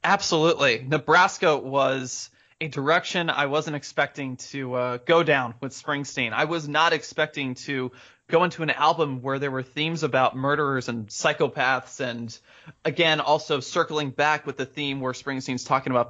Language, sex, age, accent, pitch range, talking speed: English, male, 20-39, American, 120-150 Hz, 160 wpm